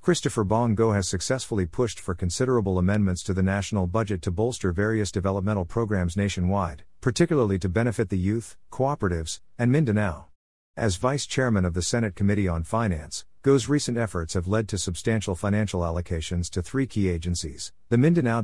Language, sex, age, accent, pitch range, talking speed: English, male, 50-69, American, 90-115 Hz, 165 wpm